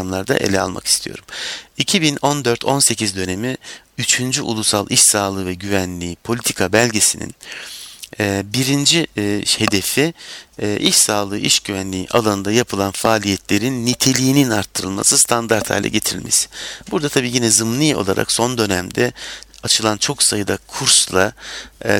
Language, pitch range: Turkish, 95-125 Hz